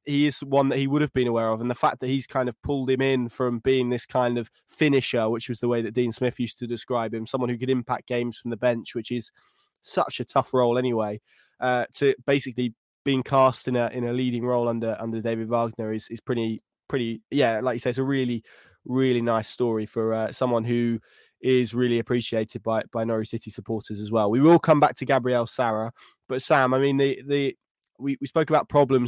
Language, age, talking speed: English, 20-39, 235 wpm